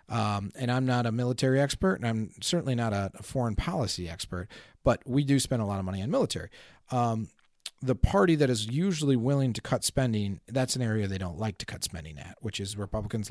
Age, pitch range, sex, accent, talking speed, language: 40-59, 105-135 Hz, male, American, 215 wpm, English